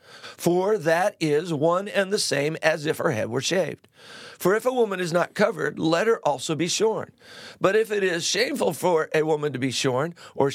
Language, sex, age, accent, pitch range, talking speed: English, male, 50-69, American, 150-195 Hz, 210 wpm